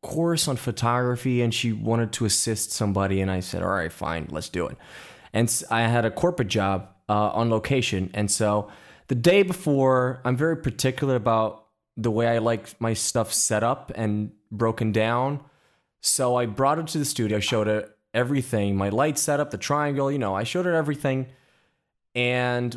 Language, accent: English, American